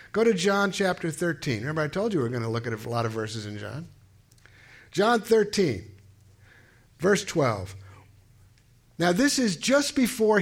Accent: American